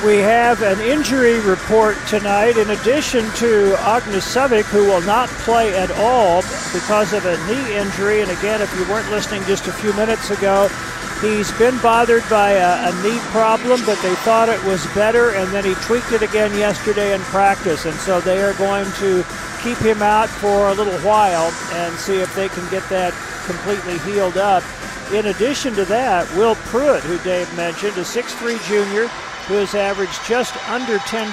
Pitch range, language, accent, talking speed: 190-225 Hz, English, American, 185 wpm